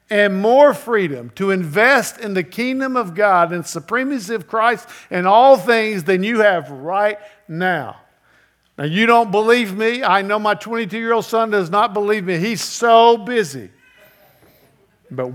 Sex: male